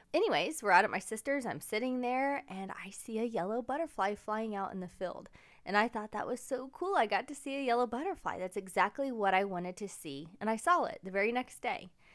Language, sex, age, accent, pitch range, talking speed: English, female, 20-39, American, 195-250 Hz, 240 wpm